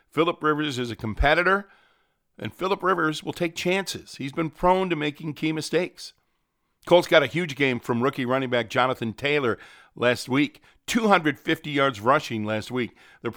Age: 50-69